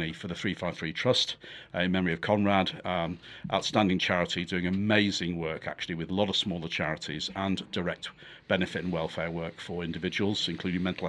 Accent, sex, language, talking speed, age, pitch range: British, male, English, 175 wpm, 50-69, 90-110 Hz